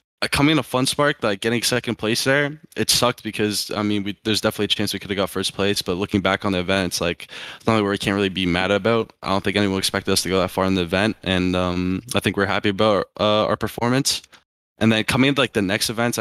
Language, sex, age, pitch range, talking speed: English, male, 10-29, 95-110 Hz, 265 wpm